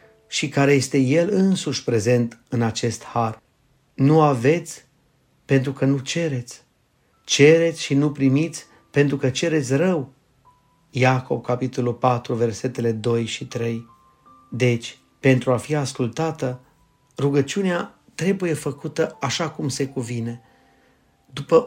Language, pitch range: Romanian, 125-150 Hz